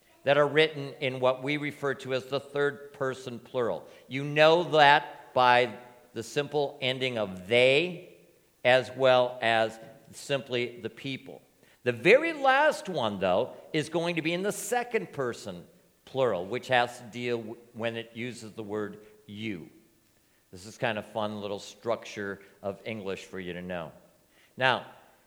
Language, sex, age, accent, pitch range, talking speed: English, male, 50-69, American, 110-150 Hz, 155 wpm